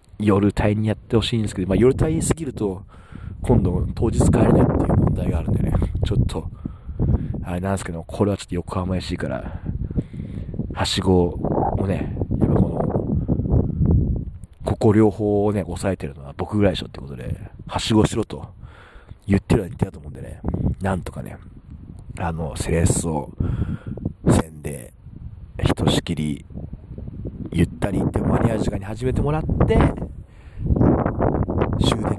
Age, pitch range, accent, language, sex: 40-59, 85-105 Hz, native, Japanese, male